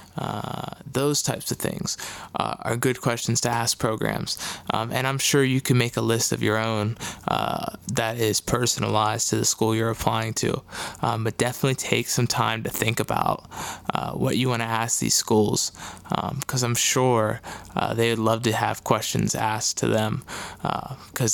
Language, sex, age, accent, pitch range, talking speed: English, male, 20-39, American, 110-130 Hz, 185 wpm